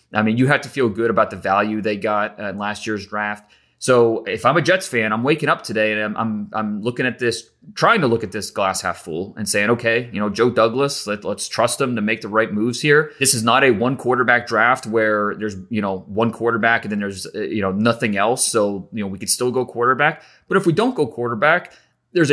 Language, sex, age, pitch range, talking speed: English, male, 30-49, 105-135 Hz, 245 wpm